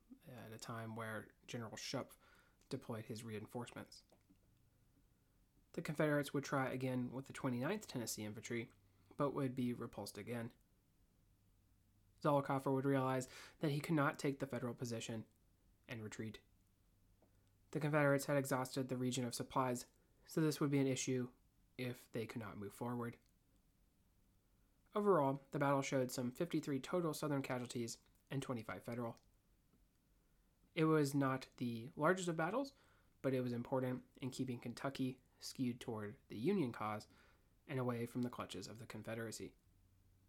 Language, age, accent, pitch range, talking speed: English, 30-49, American, 100-135 Hz, 145 wpm